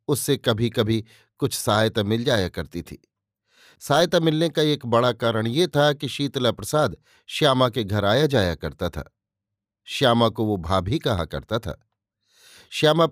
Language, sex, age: Hindi, male, 50-69